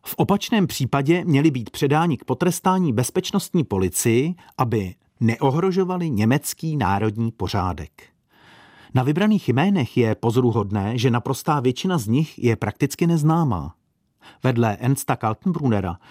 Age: 40-59